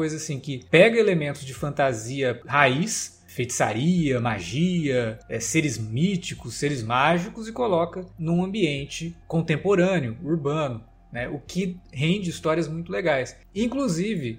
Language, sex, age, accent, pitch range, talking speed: Portuguese, male, 20-39, Brazilian, 130-170 Hz, 120 wpm